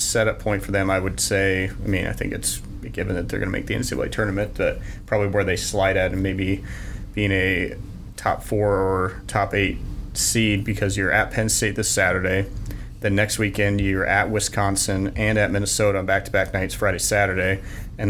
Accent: American